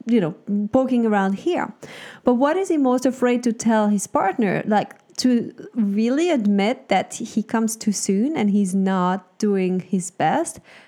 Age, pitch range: 30-49, 190-240 Hz